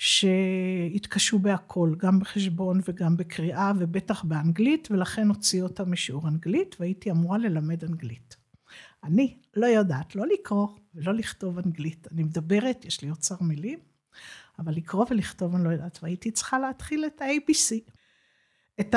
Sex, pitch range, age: female, 180-255 Hz, 50-69